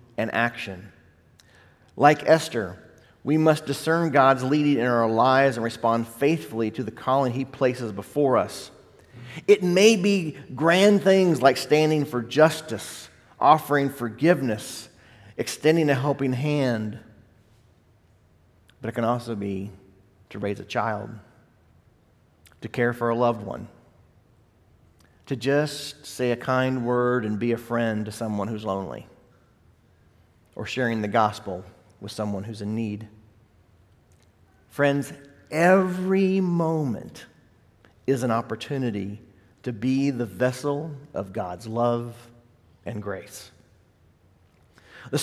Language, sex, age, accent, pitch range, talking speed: English, male, 40-59, American, 105-155 Hz, 120 wpm